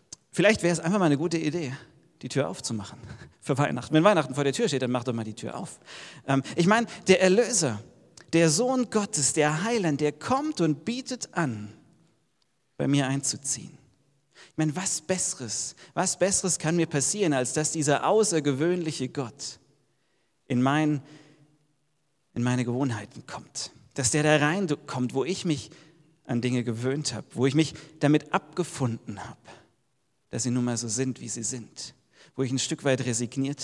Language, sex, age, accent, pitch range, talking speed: German, male, 40-59, German, 125-155 Hz, 170 wpm